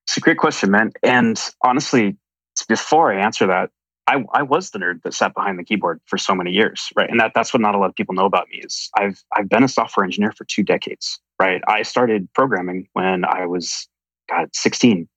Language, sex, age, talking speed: English, male, 30-49, 225 wpm